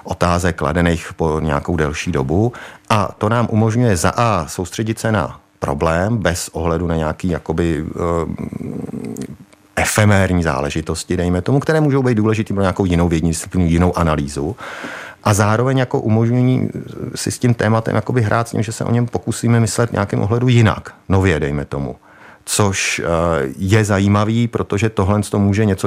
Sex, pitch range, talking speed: male, 85-105 Hz, 155 wpm